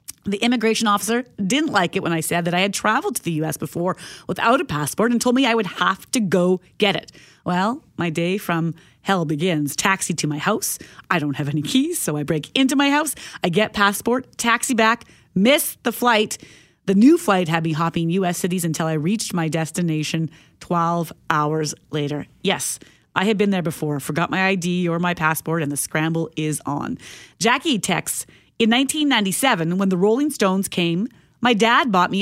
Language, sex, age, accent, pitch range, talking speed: English, female, 30-49, American, 170-235 Hz, 195 wpm